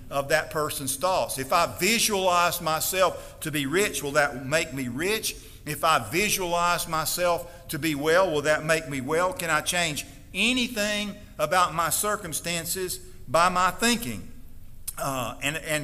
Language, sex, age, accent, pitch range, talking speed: English, male, 50-69, American, 145-195 Hz, 155 wpm